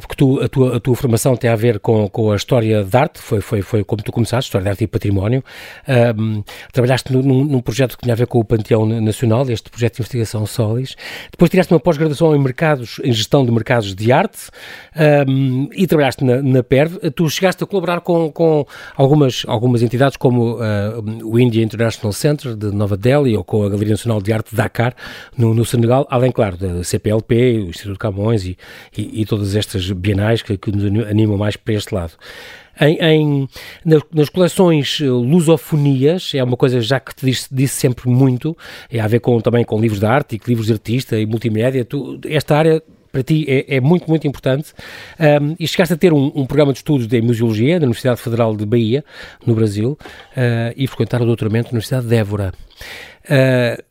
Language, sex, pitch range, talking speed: Portuguese, male, 110-140 Hz, 205 wpm